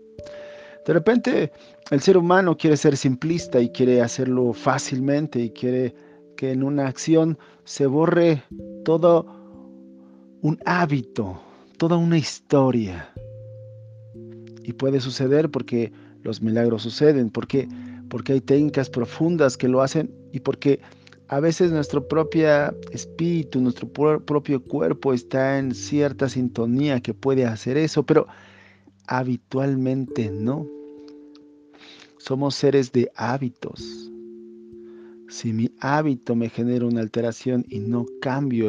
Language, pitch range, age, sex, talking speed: Spanish, 115-145 Hz, 40-59, male, 120 wpm